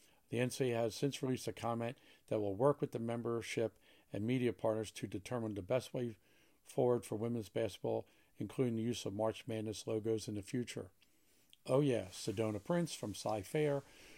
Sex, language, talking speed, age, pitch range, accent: male, English, 180 wpm, 50-69, 110-125 Hz, American